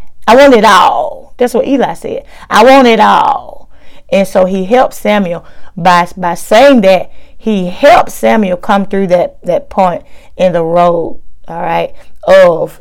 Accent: American